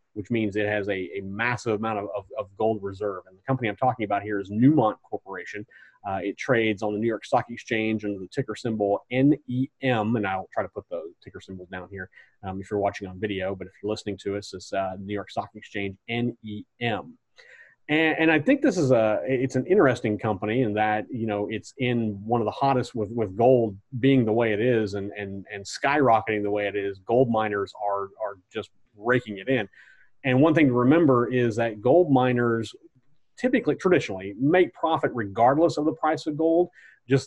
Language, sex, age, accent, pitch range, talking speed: English, male, 30-49, American, 105-130 Hz, 210 wpm